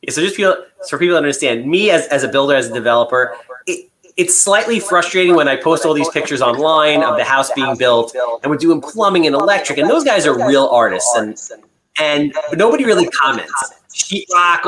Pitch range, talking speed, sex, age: 145-205 Hz, 215 wpm, male, 30-49